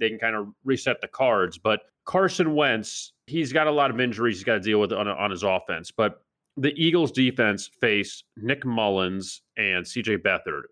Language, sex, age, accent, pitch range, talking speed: English, male, 30-49, American, 100-125 Hz, 195 wpm